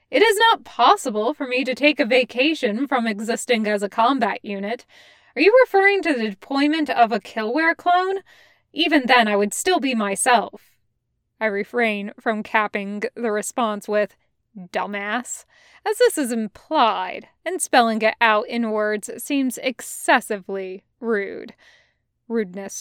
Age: 20-39